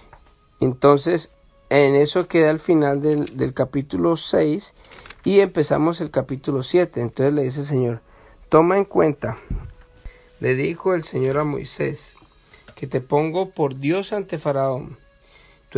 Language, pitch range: Spanish, 135-170 Hz